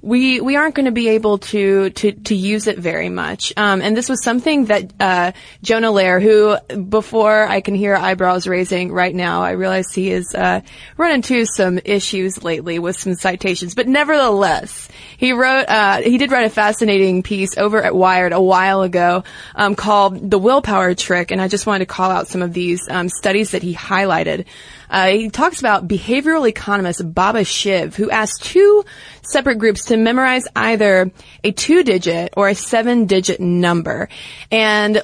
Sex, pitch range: female, 185-225 Hz